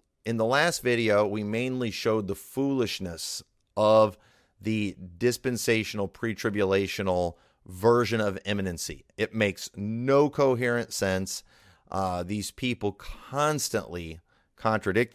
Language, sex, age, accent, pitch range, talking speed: English, male, 30-49, American, 95-120 Hz, 105 wpm